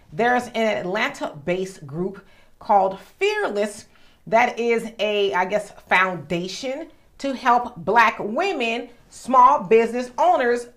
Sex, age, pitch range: female, 40-59, 200-270 Hz